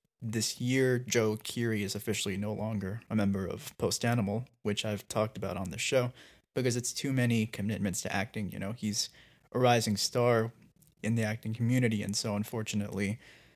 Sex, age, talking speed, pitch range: male, 20-39, 175 wpm, 105-130 Hz